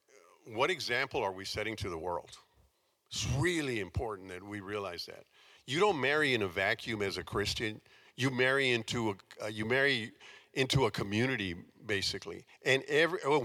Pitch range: 115-175 Hz